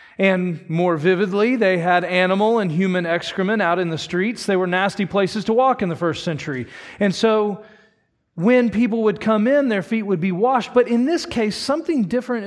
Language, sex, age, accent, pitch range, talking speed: English, male, 40-59, American, 150-230 Hz, 195 wpm